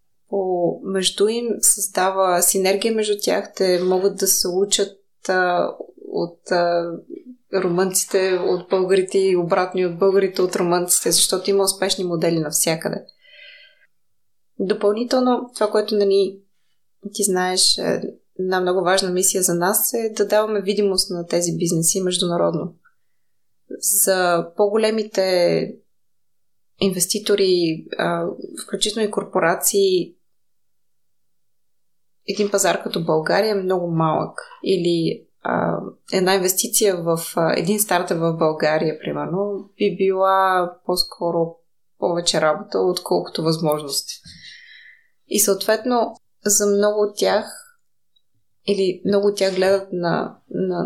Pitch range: 175-205 Hz